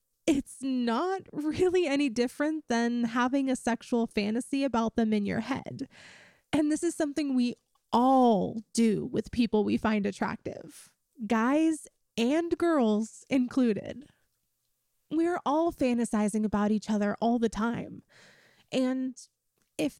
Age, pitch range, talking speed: 20-39, 220-285 Hz, 125 wpm